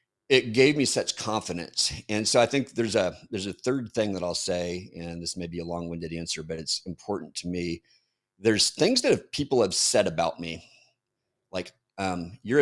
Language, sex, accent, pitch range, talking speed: English, male, American, 85-105 Hz, 200 wpm